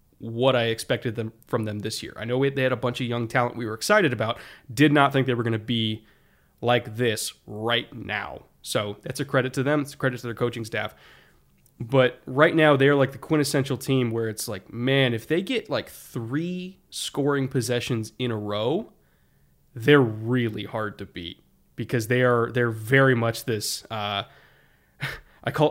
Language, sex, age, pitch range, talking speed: English, male, 20-39, 115-135 Hz, 195 wpm